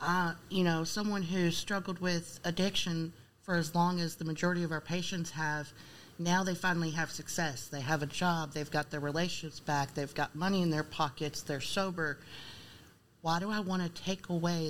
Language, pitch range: English, 155-180 Hz